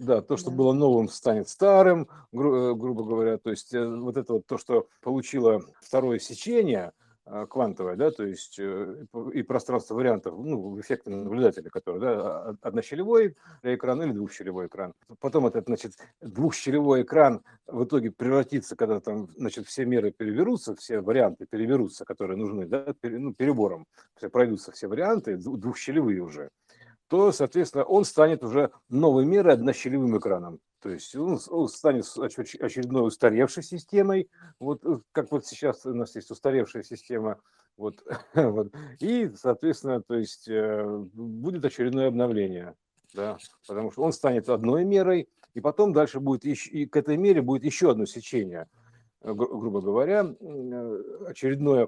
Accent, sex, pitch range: native, male, 115-155 Hz